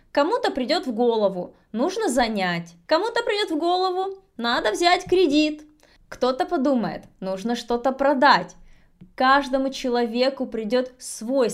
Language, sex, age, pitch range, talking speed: Russian, female, 20-39, 210-280 Hz, 115 wpm